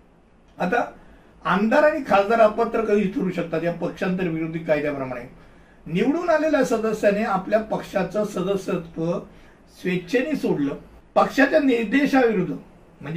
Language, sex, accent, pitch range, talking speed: Hindi, male, native, 185-245 Hz, 45 wpm